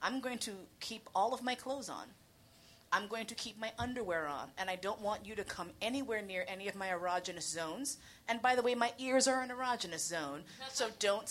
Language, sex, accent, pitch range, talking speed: English, female, American, 180-225 Hz, 225 wpm